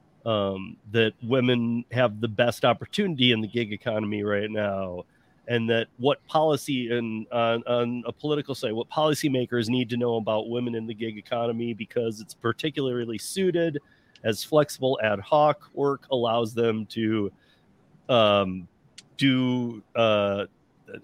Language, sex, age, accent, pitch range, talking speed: English, male, 40-59, American, 105-130 Hz, 140 wpm